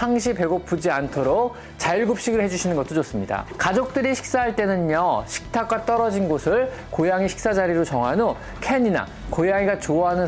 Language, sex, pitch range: Korean, male, 155-230 Hz